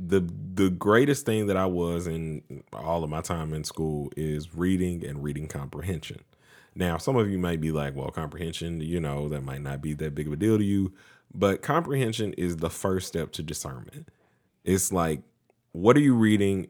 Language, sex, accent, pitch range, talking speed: English, male, American, 80-95 Hz, 200 wpm